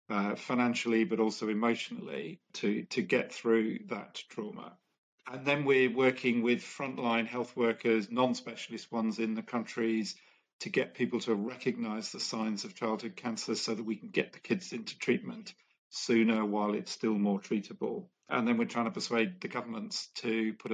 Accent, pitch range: British, 110-130 Hz